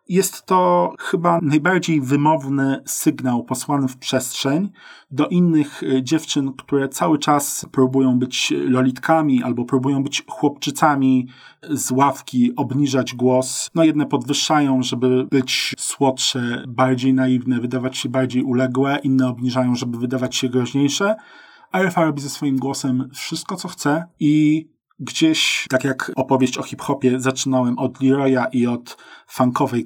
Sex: male